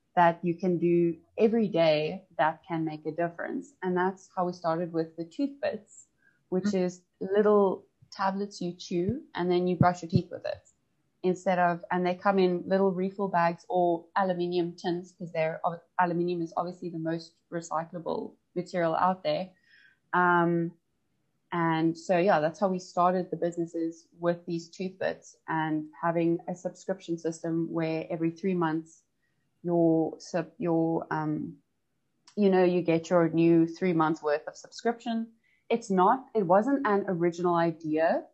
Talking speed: 155 wpm